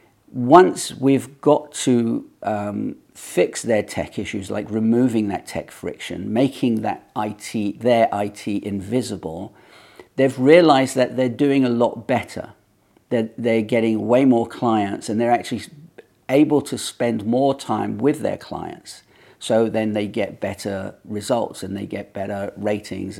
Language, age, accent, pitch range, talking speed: English, 50-69, British, 105-130 Hz, 160 wpm